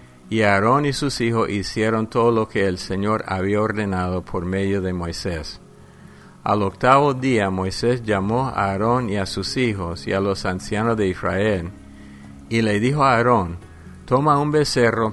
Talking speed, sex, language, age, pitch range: 165 wpm, male, English, 50-69, 95-115 Hz